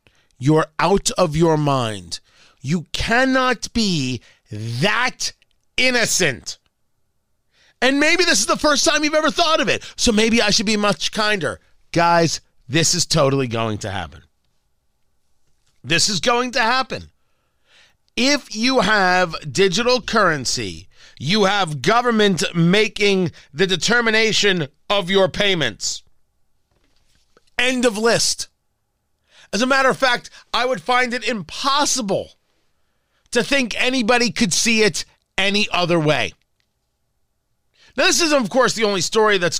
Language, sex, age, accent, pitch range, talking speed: English, male, 40-59, American, 160-235 Hz, 130 wpm